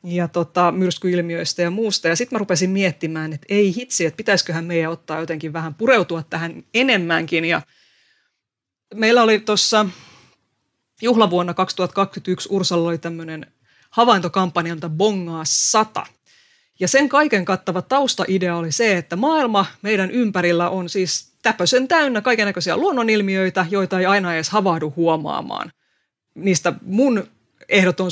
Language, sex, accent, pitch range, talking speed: Finnish, female, native, 170-205 Hz, 130 wpm